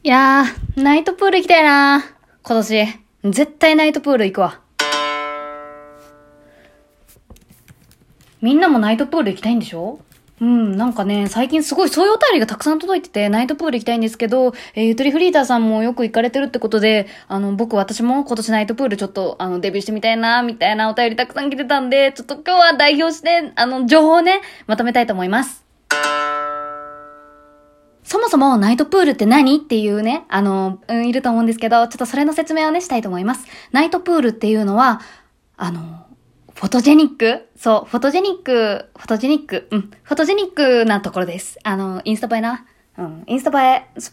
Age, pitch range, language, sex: 20-39, 210-290 Hz, Japanese, female